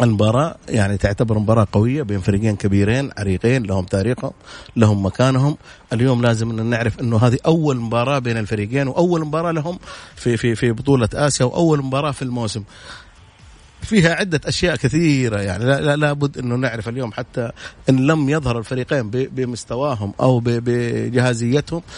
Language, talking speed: Arabic, 145 wpm